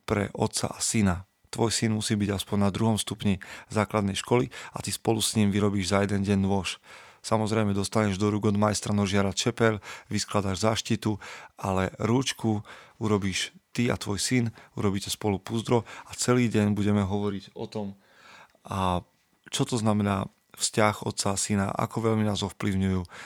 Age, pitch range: 40-59, 100-115 Hz